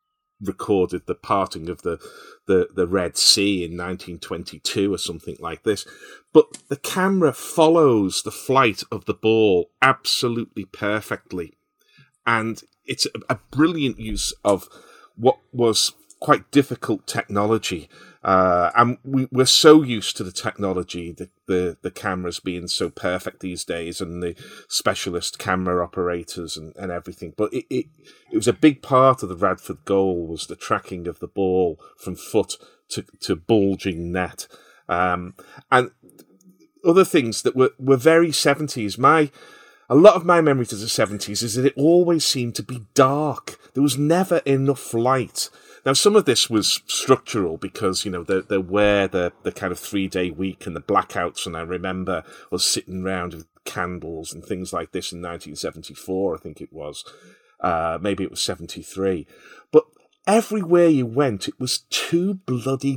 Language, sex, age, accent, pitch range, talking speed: English, male, 40-59, British, 95-145 Hz, 160 wpm